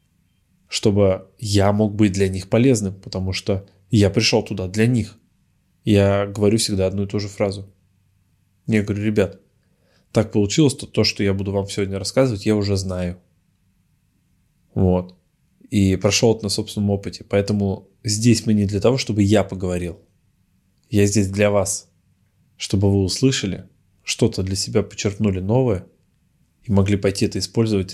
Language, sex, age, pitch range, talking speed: Russian, male, 20-39, 95-105 Hz, 155 wpm